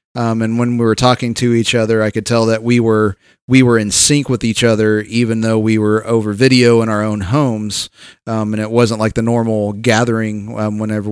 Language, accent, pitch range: English, American, 105-120 Hz